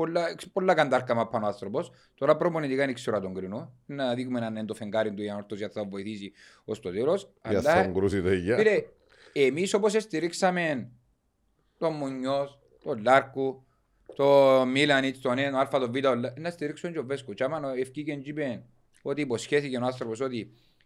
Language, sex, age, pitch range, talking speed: Greek, male, 30-49, 115-155 Hz, 95 wpm